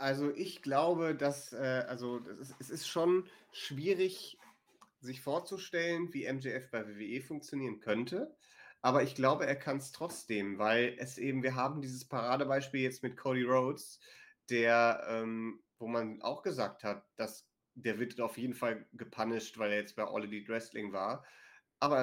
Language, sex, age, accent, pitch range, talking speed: German, male, 30-49, German, 115-140 Hz, 165 wpm